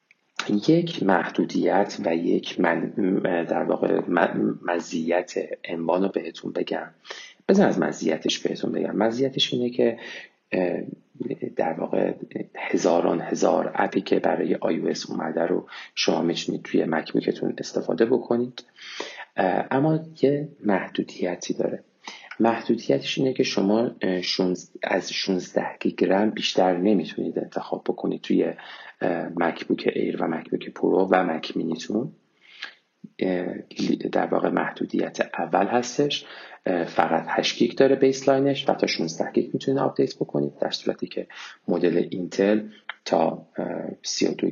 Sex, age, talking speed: male, 30-49, 110 wpm